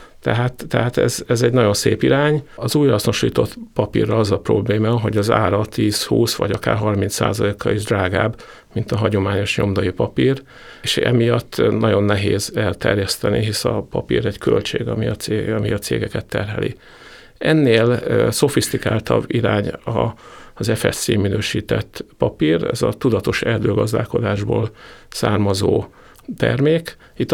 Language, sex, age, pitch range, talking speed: Hungarian, male, 50-69, 105-120 Hz, 125 wpm